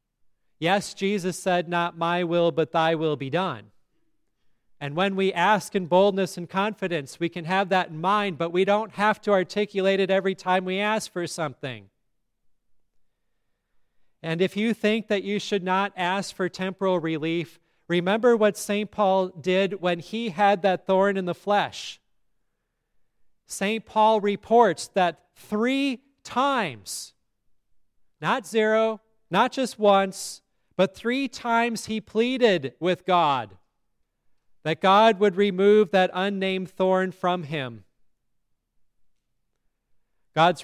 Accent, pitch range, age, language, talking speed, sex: American, 160-200 Hz, 40-59, English, 135 wpm, male